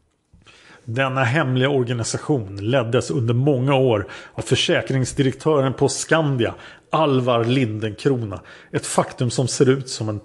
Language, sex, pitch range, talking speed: Swedish, male, 115-145 Hz, 115 wpm